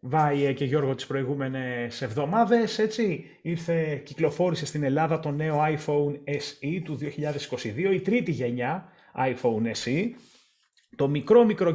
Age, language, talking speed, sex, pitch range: 30-49, Greek, 120 wpm, male, 135-185 Hz